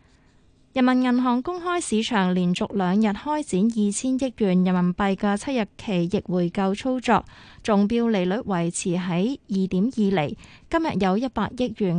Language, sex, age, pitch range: Chinese, female, 20-39, 190-240 Hz